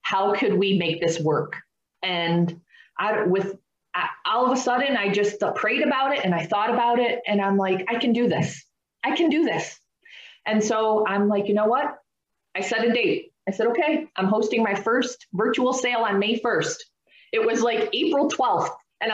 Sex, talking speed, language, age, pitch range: female, 200 wpm, English, 20-39, 185-235 Hz